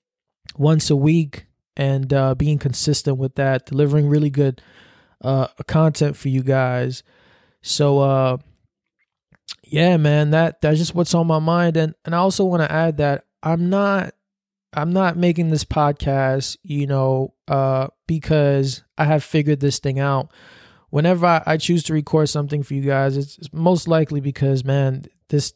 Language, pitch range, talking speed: English, 135-155 Hz, 165 wpm